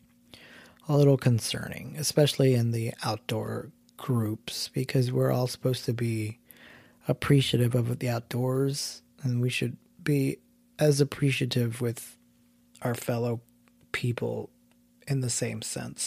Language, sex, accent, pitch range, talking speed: English, male, American, 80-135 Hz, 120 wpm